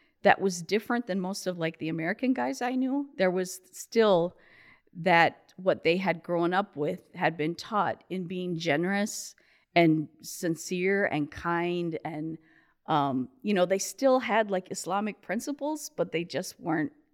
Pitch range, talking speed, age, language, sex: 160-200 Hz, 160 wpm, 40-59, English, female